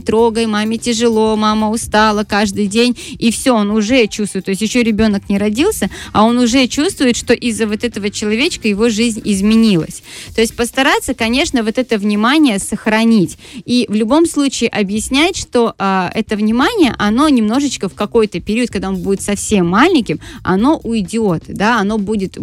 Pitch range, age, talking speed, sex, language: 195-235 Hz, 20-39, 165 wpm, female, Russian